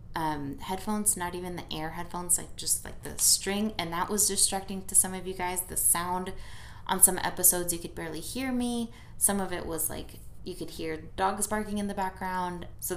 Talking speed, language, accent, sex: 210 wpm, English, American, female